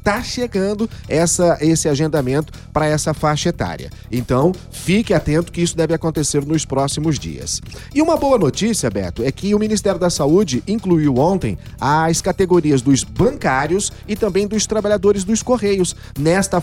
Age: 40-59